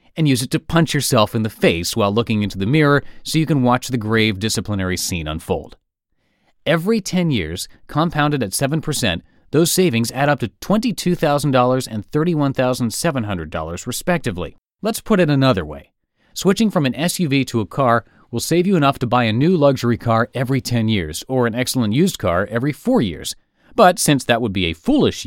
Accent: American